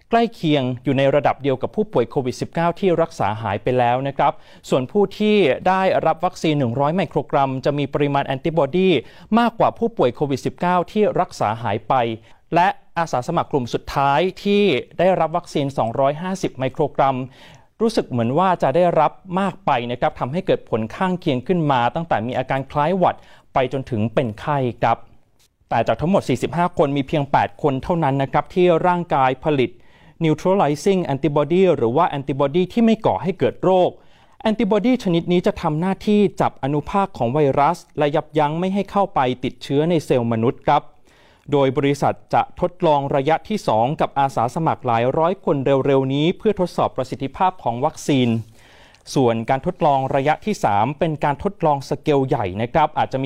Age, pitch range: 30-49, 130-180 Hz